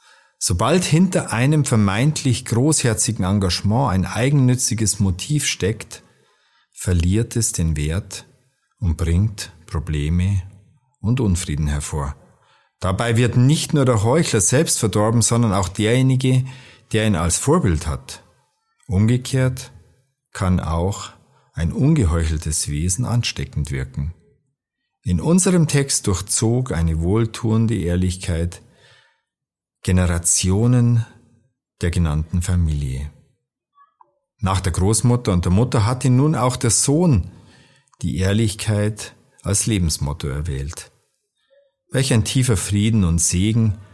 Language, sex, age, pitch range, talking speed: German, male, 50-69, 90-125 Hz, 105 wpm